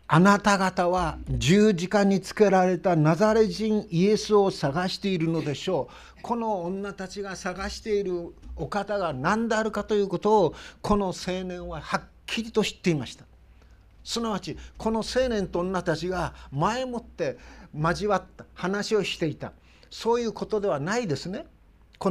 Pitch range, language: 175-210 Hz, Japanese